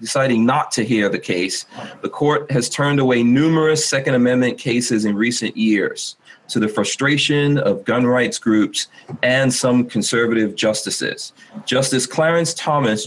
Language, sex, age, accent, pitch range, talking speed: English, male, 40-59, American, 115-145 Hz, 145 wpm